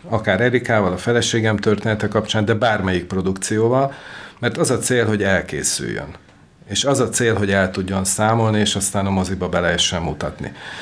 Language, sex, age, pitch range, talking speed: Hungarian, male, 50-69, 100-125 Hz, 160 wpm